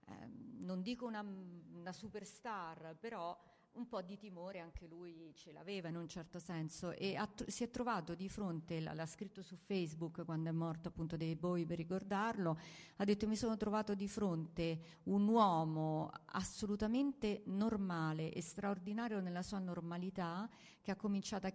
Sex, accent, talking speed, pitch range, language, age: female, native, 160 wpm, 165-200 Hz, Italian, 40-59